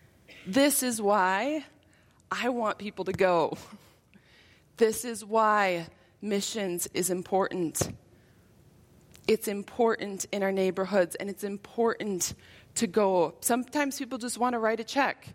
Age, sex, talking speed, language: 20-39, female, 125 wpm, English